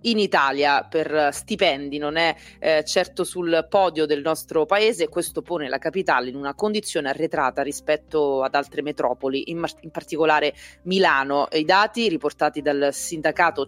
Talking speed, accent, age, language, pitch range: 160 wpm, native, 30-49, Italian, 145-190 Hz